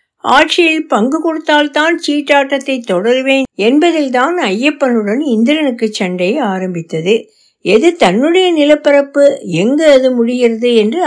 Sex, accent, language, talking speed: female, native, Tamil, 80 wpm